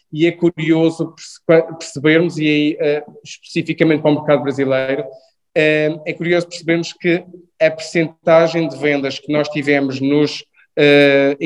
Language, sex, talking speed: Portuguese, male, 135 wpm